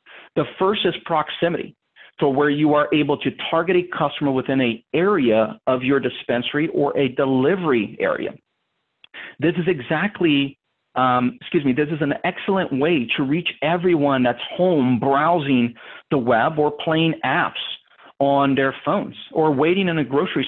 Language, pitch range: English, 135-165 Hz